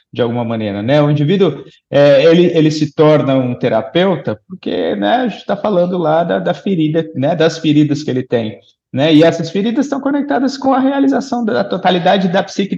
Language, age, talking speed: Portuguese, 30-49, 195 wpm